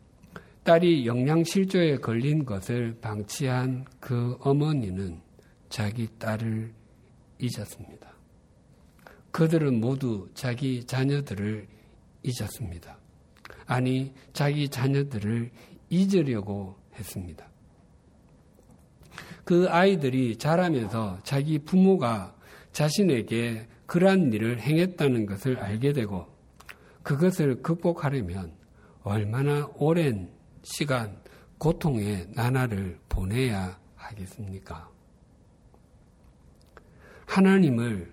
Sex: male